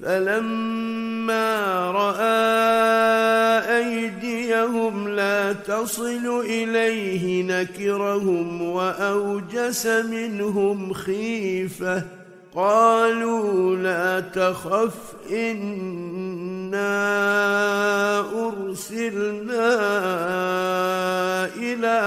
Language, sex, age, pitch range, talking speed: Arabic, male, 50-69, 190-225 Hz, 45 wpm